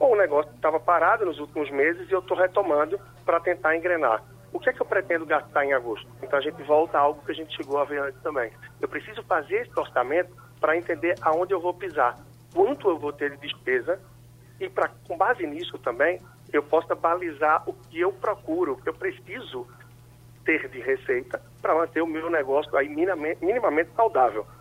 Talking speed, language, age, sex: 195 wpm, Portuguese, 50-69, male